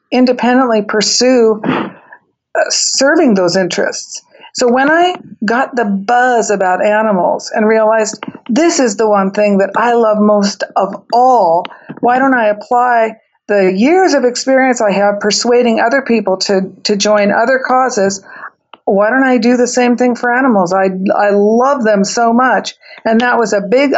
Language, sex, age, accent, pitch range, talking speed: English, female, 50-69, American, 205-250 Hz, 160 wpm